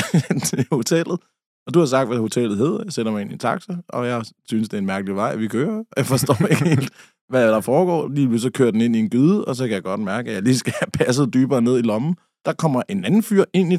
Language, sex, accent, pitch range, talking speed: Danish, male, native, 115-160 Hz, 280 wpm